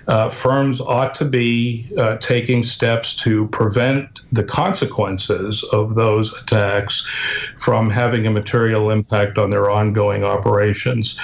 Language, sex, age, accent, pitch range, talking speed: English, male, 50-69, American, 105-120 Hz, 130 wpm